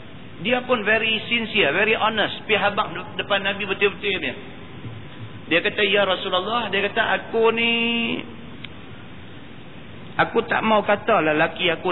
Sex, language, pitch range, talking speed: male, Malay, 175-225 Hz, 135 wpm